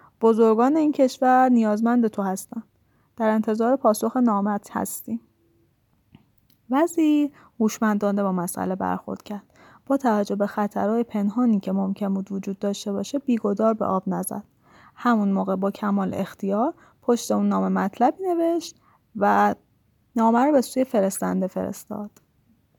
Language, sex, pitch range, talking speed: Persian, female, 205-265 Hz, 130 wpm